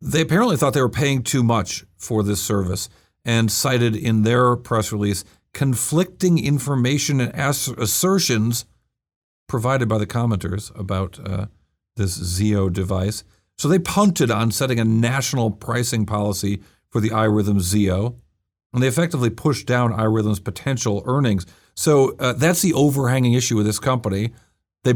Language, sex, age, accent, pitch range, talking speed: English, male, 50-69, American, 105-135 Hz, 145 wpm